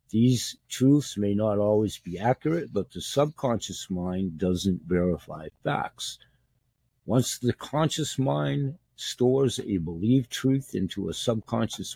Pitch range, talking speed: 90-125 Hz, 125 wpm